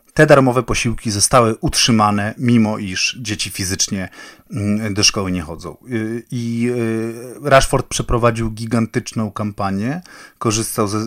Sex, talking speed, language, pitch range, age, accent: male, 105 wpm, Polish, 100-120 Hz, 30-49, native